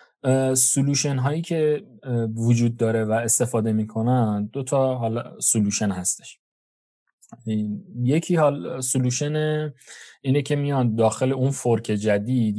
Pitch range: 105-130 Hz